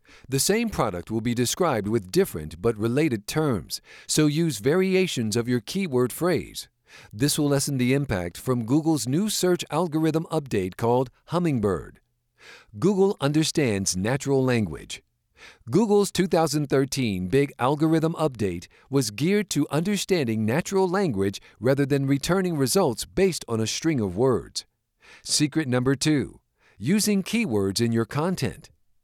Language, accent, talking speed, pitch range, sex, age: English, American, 130 wpm, 115-165 Hz, male, 50-69